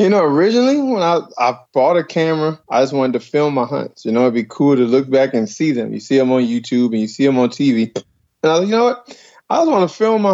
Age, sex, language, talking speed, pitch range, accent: 20-39, male, English, 295 wpm, 125-170 Hz, American